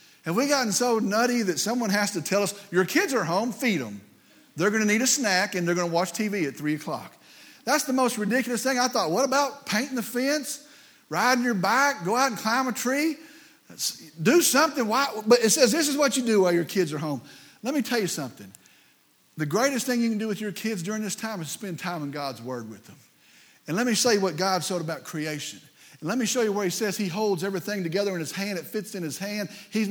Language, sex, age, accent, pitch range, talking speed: English, male, 50-69, American, 185-245 Hz, 245 wpm